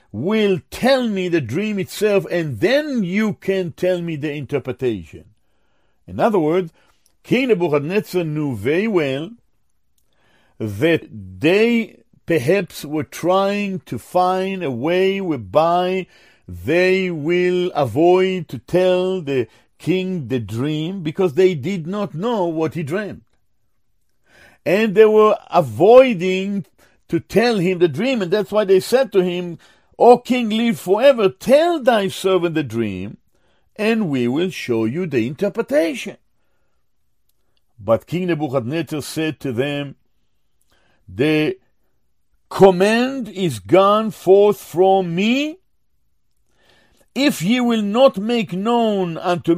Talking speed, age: 120 wpm, 50-69